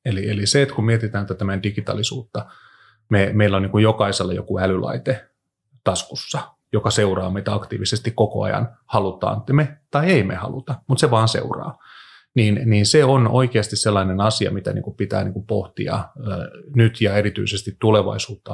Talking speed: 175 wpm